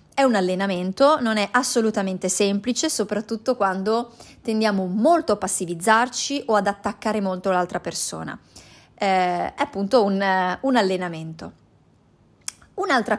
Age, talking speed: 20-39, 120 wpm